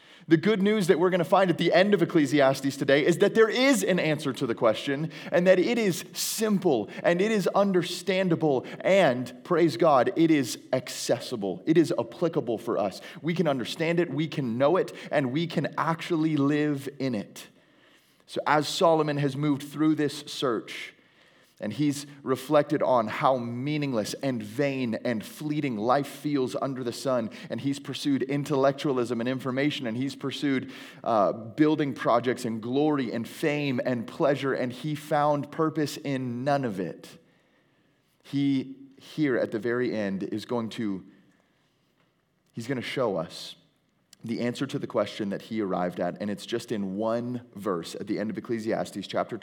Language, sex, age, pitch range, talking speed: English, male, 30-49, 130-165 Hz, 170 wpm